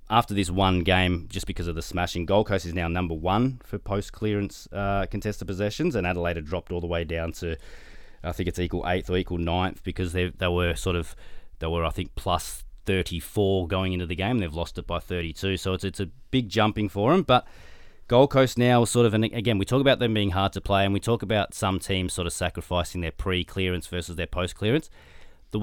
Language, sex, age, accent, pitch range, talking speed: English, male, 20-39, Australian, 80-100 Hz, 225 wpm